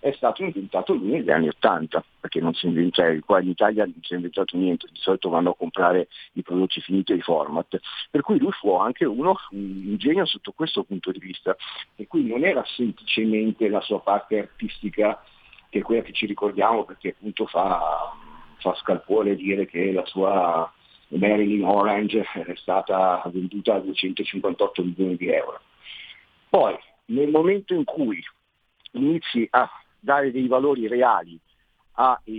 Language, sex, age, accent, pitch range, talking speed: Italian, male, 50-69, native, 90-110 Hz, 160 wpm